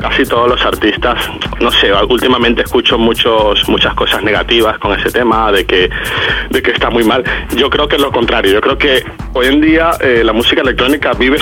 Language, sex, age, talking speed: Spanish, male, 30-49, 205 wpm